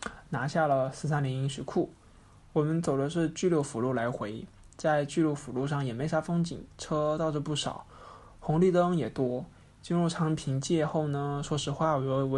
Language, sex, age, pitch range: Chinese, male, 20-39, 135-155 Hz